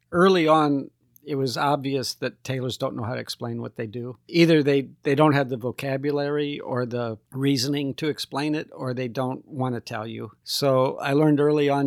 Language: English